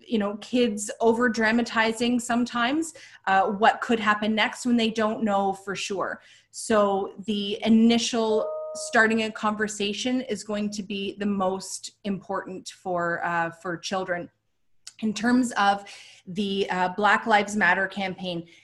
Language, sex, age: English, female, 30-49